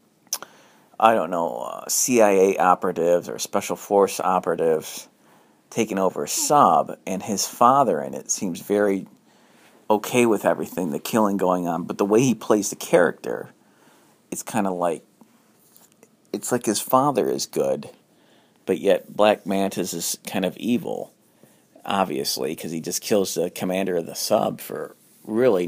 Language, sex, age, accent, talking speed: English, male, 40-59, American, 150 wpm